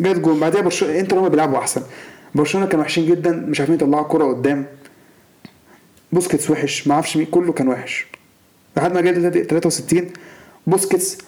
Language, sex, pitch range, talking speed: Arabic, male, 155-220 Hz, 155 wpm